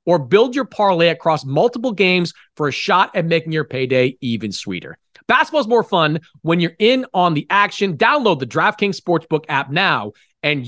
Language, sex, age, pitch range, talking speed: English, male, 40-59, 150-210 Hz, 180 wpm